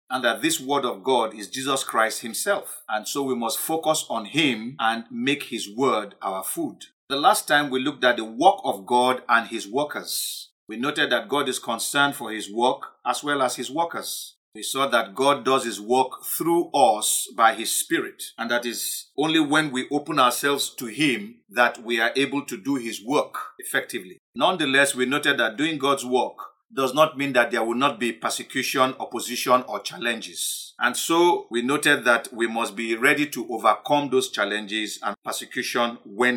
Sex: male